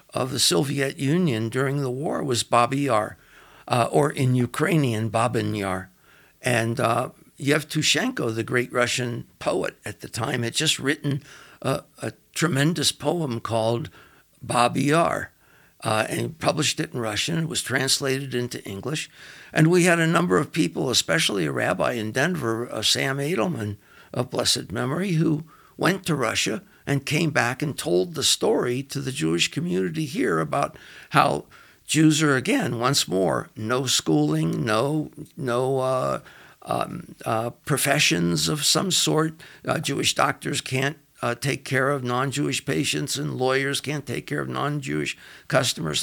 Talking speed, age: 150 wpm, 60-79